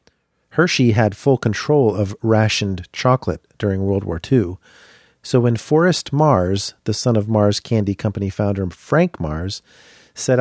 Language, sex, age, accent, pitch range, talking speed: English, male, 40-59, American, 100-125 Hz, 145 wpm